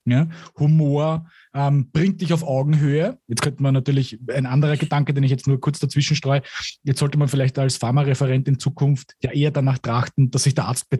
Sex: male